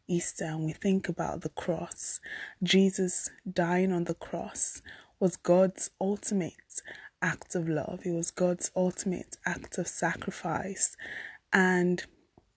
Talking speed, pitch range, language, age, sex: 125 wpm, 175-200 Hz, English, 20-39, female